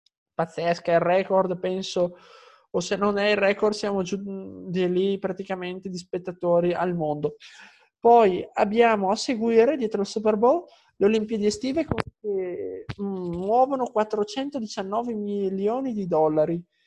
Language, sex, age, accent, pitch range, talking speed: Italian, male, 20-39, native, 180-220 Hz, 135 wpm